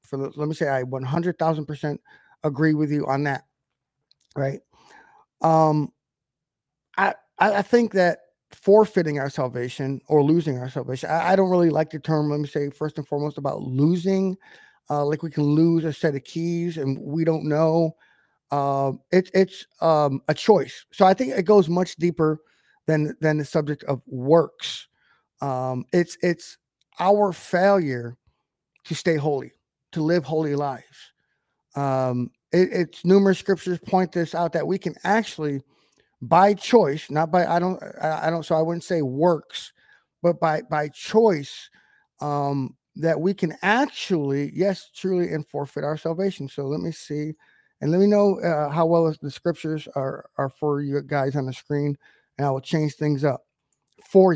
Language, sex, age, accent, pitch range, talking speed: English, male, 30-49, American, 140-175 Hz, 170 wpm